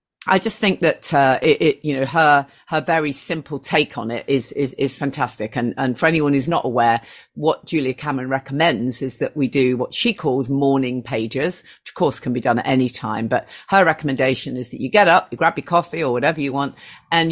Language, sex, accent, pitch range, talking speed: English, female, British, 130-165 Hz, 230 wpm